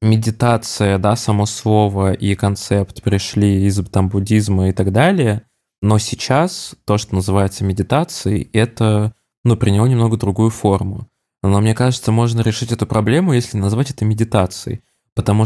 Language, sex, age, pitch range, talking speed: Russian, male, 20-39, 100-120 Hz, 145 wpm